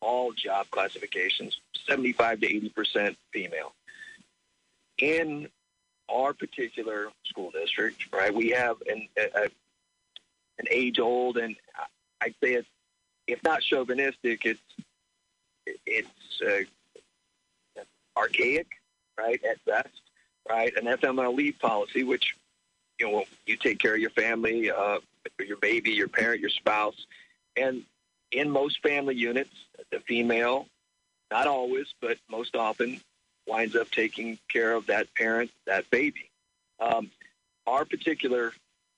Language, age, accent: English, 50-69, American